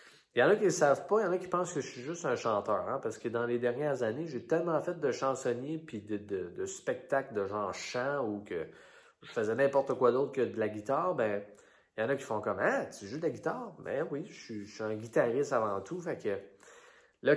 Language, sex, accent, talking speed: French, male, Canadian, 270 wpm